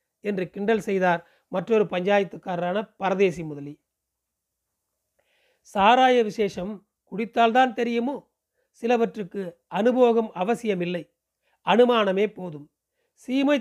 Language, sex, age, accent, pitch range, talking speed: Tamil, male, 40-59, native, 190-235 Hz, 75 wpm